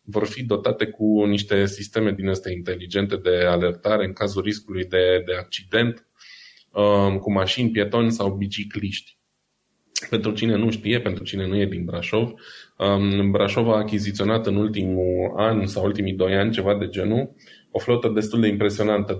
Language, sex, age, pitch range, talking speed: Romanian, male, 20-39, 95-115 Hz, 155 wpm